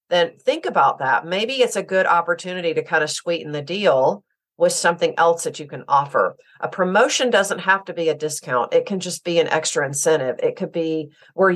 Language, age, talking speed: English, 50-69, 215 wpm